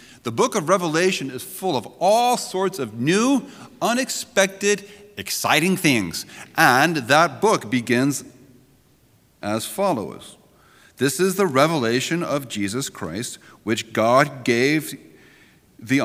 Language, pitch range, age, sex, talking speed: English, 135-195 Hz, 30-49, male, 115 wpm